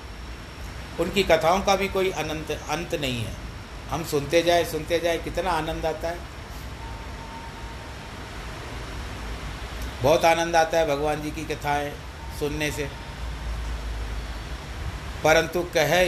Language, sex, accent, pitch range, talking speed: Hindi, male, native, 90-155 Hz, 110 wpm